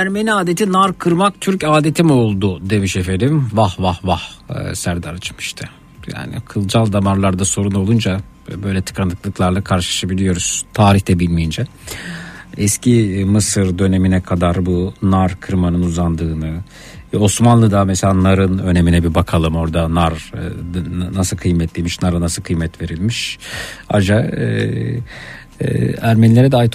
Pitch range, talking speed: 95-120 Hz, 115 wpm